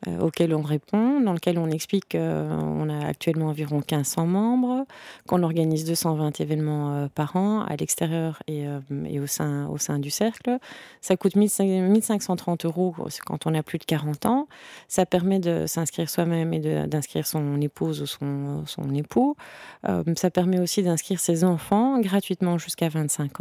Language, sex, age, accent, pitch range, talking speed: French, female, 20-39, French, 150-185 Hz, 155 wpm